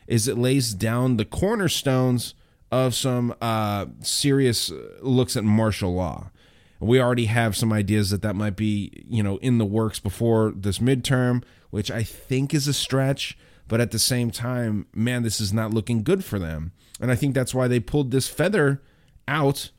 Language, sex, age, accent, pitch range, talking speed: English, male, 30-49, American, 105-130 Hz, 180 wpm